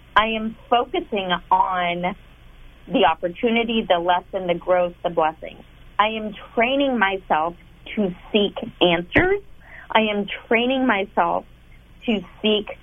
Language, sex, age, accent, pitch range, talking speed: English, female, 30-49, American, 180-230 Hz, 115 wpm